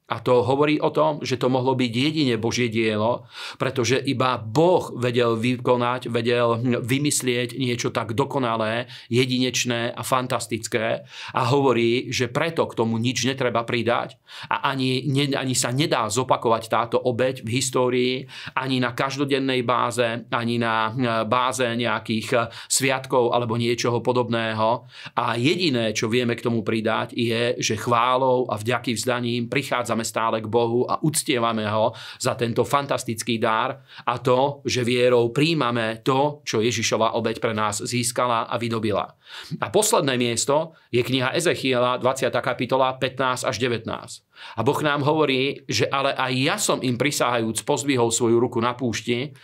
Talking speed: 145 wpm